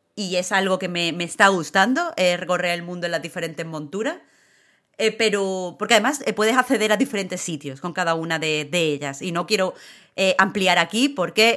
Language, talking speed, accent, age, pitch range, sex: Spanish, 200 wpm, Spanish, 30-49, 170-215 Hz, female